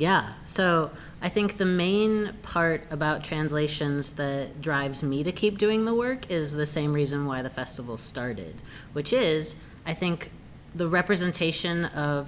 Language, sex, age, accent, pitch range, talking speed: English, female, 30-49, American, 140-170 Hz, 155 wpm